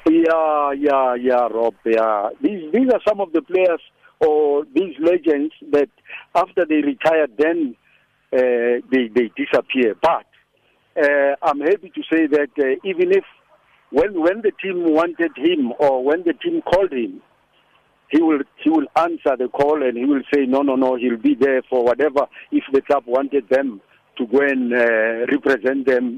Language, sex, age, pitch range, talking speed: English, male, 60-79, 130-205 Hz, 175 wpm